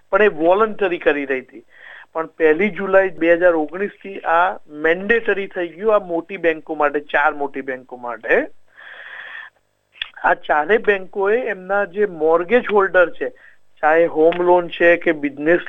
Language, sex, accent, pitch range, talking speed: Gujarati, male, native, 165-200 Hz, 150 wpm